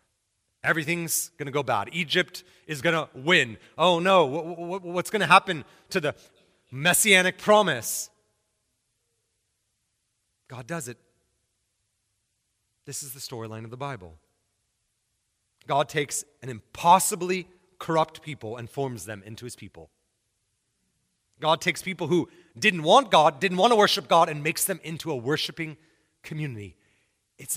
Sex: male